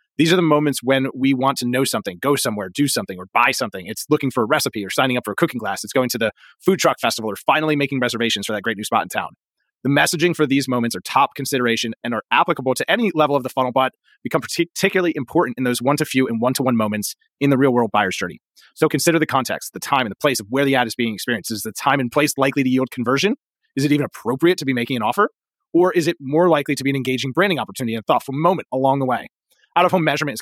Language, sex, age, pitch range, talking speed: English, male, 30-49, 125-160 Hz, 265 wpm